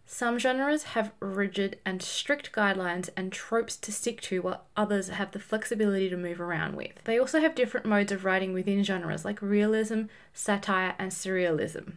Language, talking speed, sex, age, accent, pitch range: English, 175 wpm, female, 20-39, Australian, 190-245 Hz